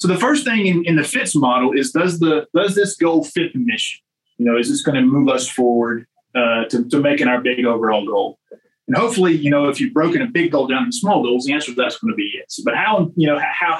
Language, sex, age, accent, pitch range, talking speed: English, male, 30-49, American, 150-255 Hz, 260 wpm